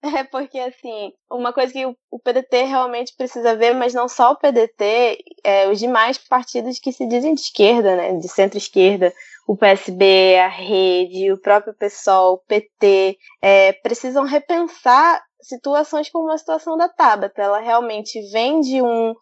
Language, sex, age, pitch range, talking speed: Portuguese, female, 10-29, 205-255 Hz, 160 wpm